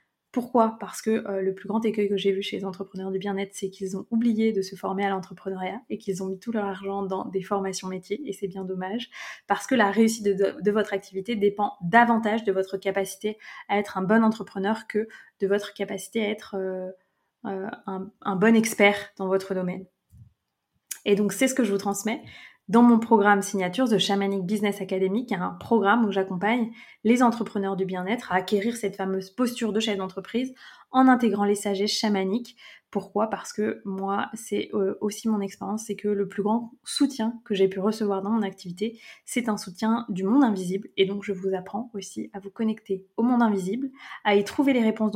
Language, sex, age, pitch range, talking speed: French, female, 20-39, 195-225 Hz, 205 wpm